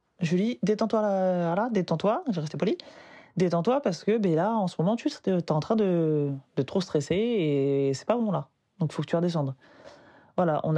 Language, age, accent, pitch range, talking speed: French, 20-39, French, 160-230 Hz, 225 wpm